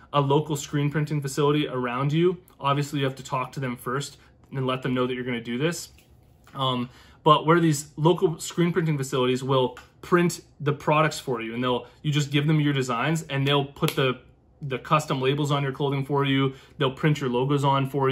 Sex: male